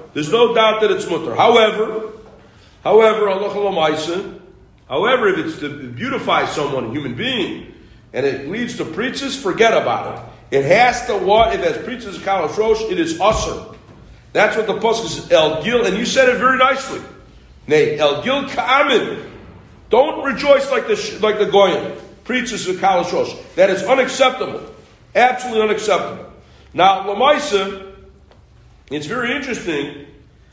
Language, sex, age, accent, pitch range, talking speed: English, male, 40-59, American, 200-295 Hz, 145 wpm